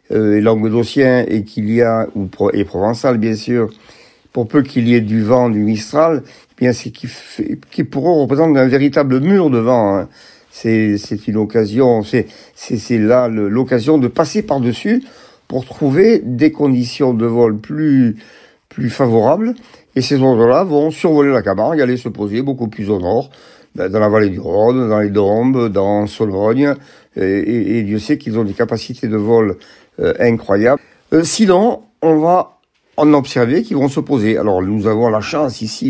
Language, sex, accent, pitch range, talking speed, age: French, male, French, 110-140 Hz, 185 wpm, 50-69